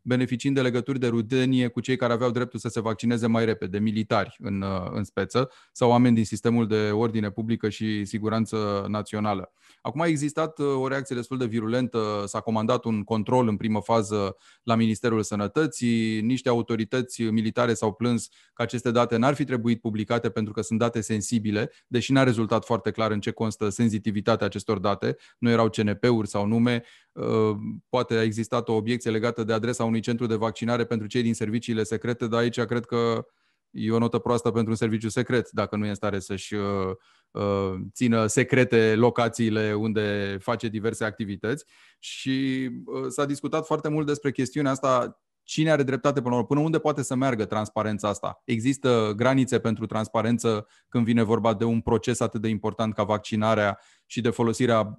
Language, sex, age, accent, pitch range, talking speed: Romanian, male, 20-39, native, 110-120 Hz, 175 wpm